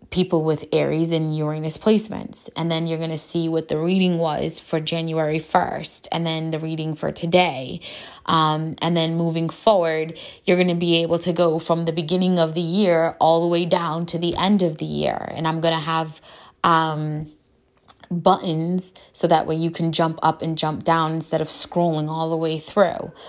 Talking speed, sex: 200 wpm, female